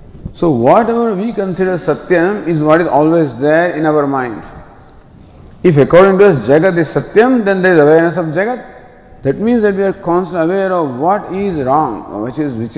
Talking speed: 195 wpm